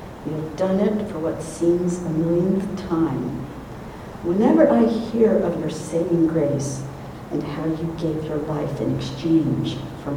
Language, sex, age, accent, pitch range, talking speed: English, female, 60-79, American, 155-220 Hz, 150 wpm